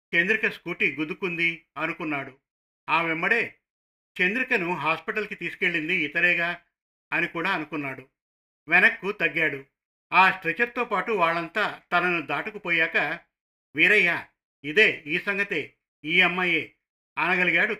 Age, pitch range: 50-69, 155-195 Hz